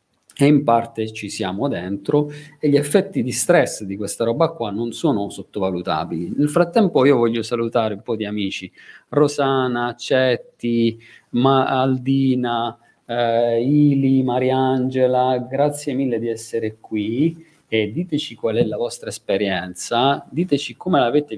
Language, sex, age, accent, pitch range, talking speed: Italian, male, 40-59, native, 105-140 Hz, 135 wpm